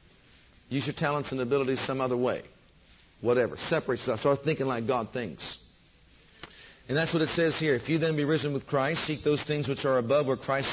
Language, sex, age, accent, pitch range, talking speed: English, male, 50-69, American, 125-155 Hz, 205 wpm